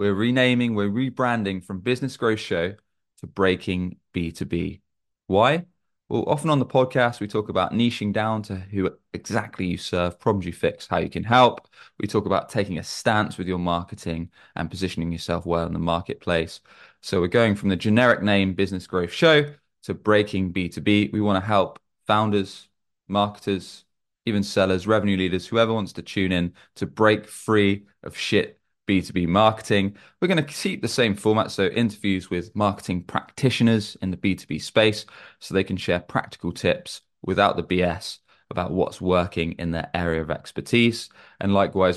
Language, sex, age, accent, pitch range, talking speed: English, male, 20-39, British, 85-105 Hz, 170 wpm